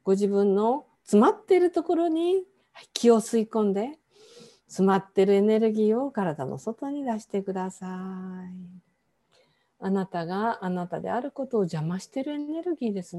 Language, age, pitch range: Japanese, 50-69, 190-260 Hz